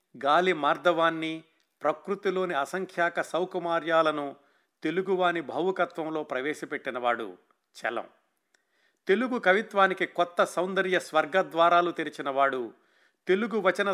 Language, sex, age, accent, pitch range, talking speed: Telugu, male, 50-69, native, 150-185 Hz, 75 wpm